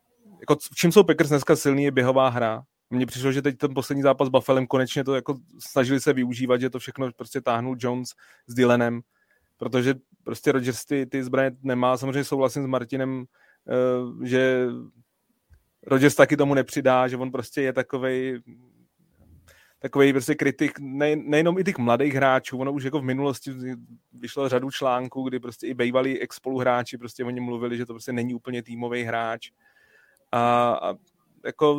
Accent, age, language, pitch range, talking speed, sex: native, 30-49, Czech, 120-135 Hz, 165 wpm, male